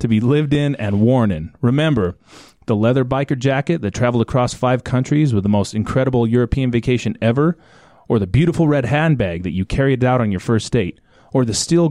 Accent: American